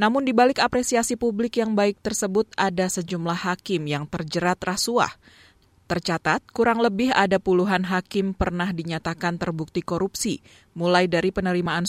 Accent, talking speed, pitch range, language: native, 130 wpm, 170-210 Hz, Indonesian